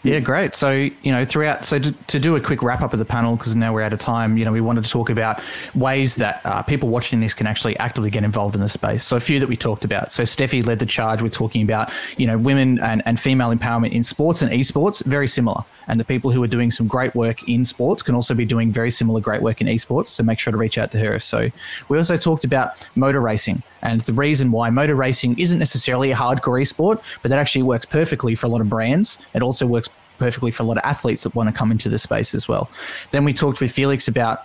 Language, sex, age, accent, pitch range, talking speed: English, male, 20-39, Australian, 115-135 Hz, 265 wpm